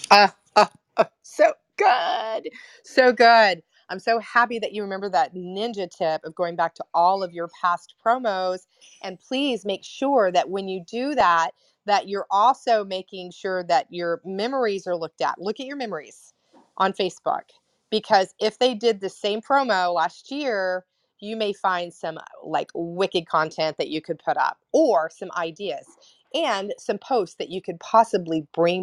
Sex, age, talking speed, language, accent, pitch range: female, 30-49, 175 wpm, English, American, 175-235 Hz